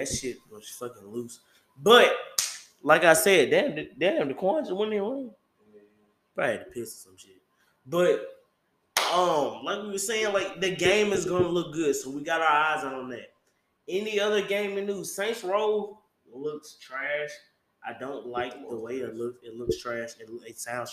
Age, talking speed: 20-39, 185 wpm